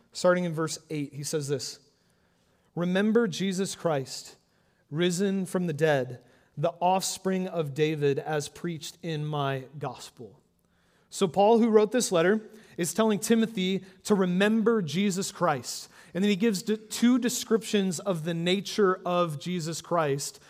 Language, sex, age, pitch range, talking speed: English, male, 30-49, 160-210 Hz, 140 wpm